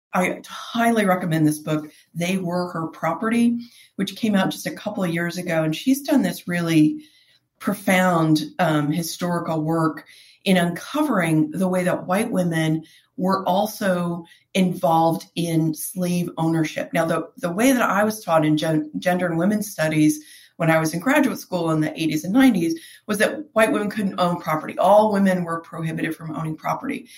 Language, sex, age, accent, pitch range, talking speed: English, female, 40-59, American, 160-210 Hz, 170 wpm